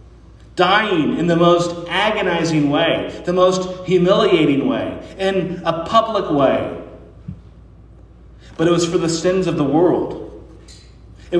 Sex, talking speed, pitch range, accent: male, 125 wpm, 150-185 Hz, American